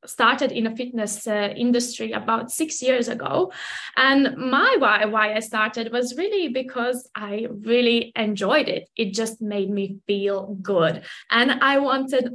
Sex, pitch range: female, 215-255 Hz